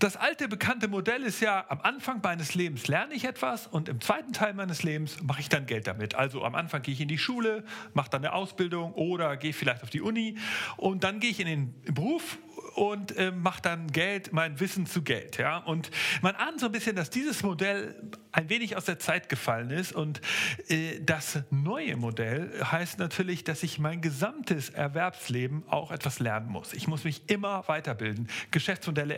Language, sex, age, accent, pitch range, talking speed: German, male, 40-59, German, 150-195 Hz, 195 wpm